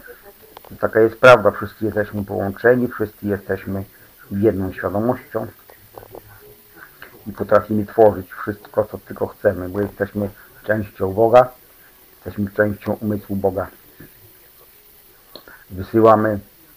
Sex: male